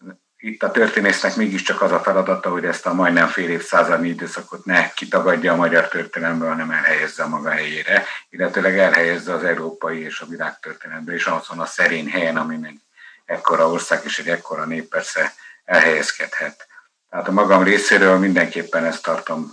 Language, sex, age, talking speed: Hungarian, male, 60-79, 160 wpm